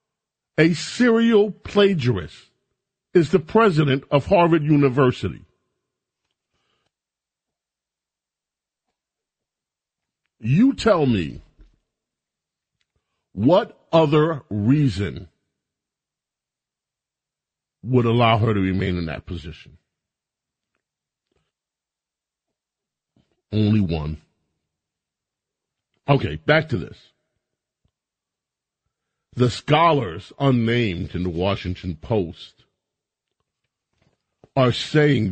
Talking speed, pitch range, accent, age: 65 wpm, 95-145 Hz, American, 50-69